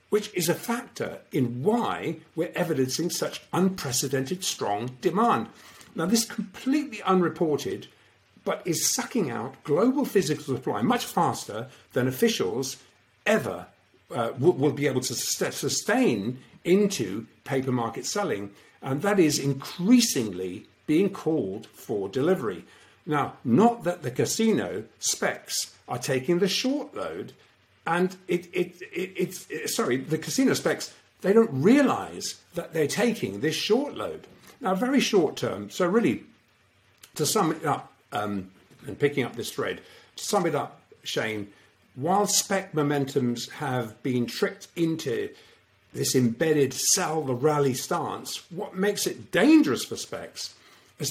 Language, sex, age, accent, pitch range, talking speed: English, male, 50-69, British, 130-200 Hz, 140 wpm